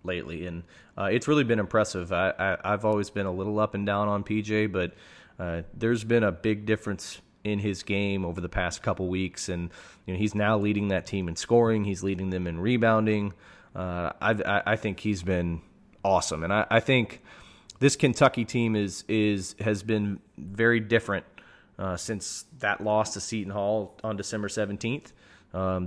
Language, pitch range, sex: English, 95-110 Hz, male